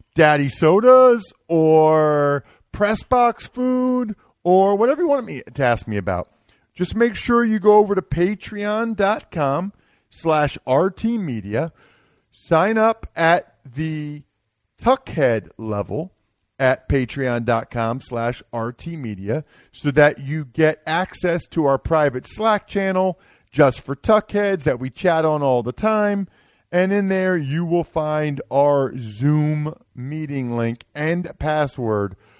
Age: 40-59